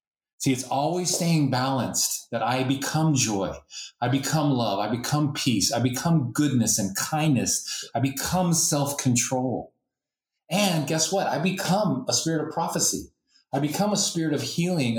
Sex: male